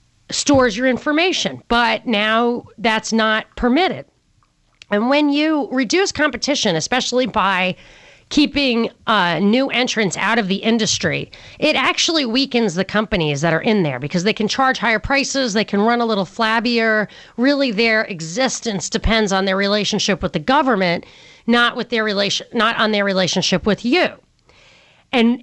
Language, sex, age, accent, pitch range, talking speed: English, female, 30-49, American, 205-270 Hz, 155 wpm